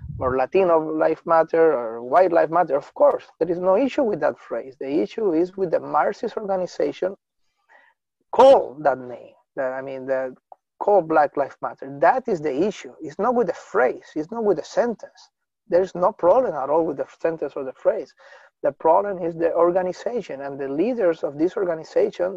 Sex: male